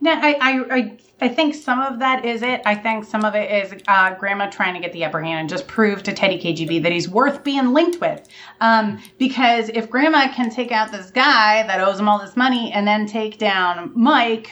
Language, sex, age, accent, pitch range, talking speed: English, female, 30-49, American, 200-250 Hz, 230 wpm